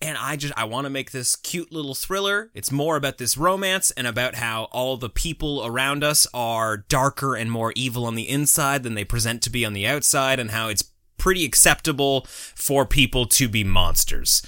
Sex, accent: male, American